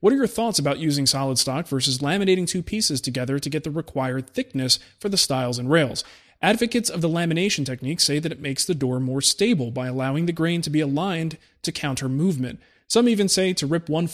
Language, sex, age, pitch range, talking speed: English, male, 30-49, 130-170 Hz, 220 wpm